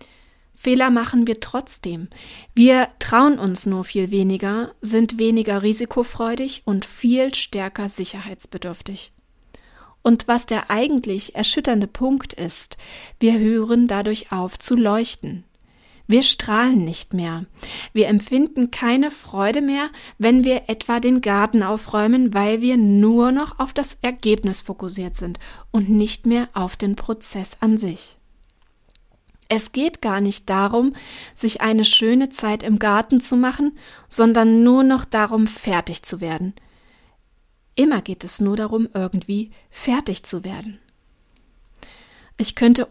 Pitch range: 195-240 Hz